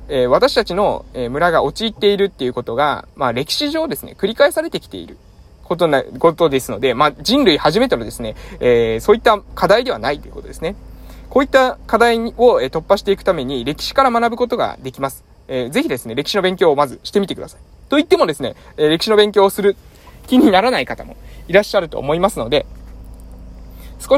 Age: 20-39